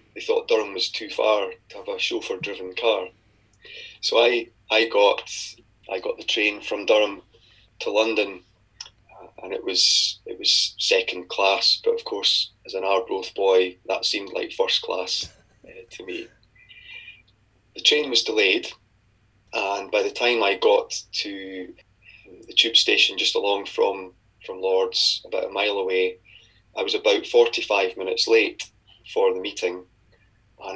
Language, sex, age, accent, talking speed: English, male, 20-39, British, 155 wpm